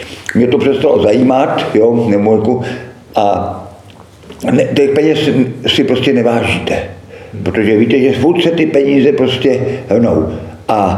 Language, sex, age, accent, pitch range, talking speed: Czech, male, 50-69, native, 105-135 Hz, 120 wpm